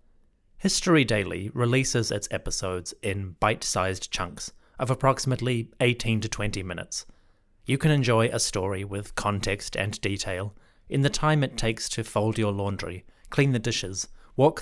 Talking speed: 150 wpm